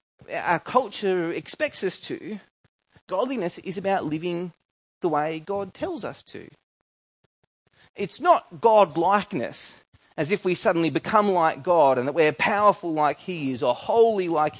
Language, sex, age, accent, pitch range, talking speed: English, male, 30-49, Australian, 150-215 Hz, 150 wpm